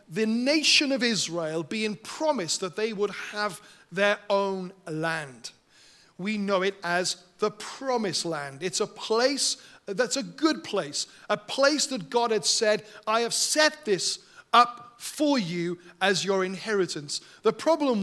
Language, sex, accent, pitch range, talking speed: English, male, British, 185-240 Hz, 150 wpm